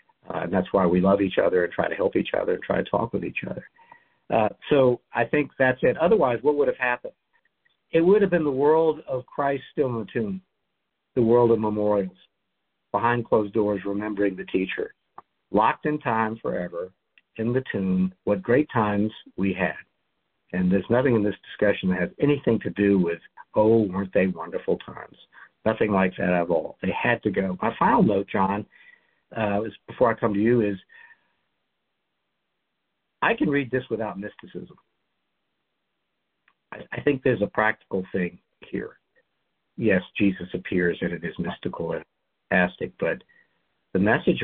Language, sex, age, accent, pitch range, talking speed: English, male, 50-69, American, 95-130 Hz, 175 wpm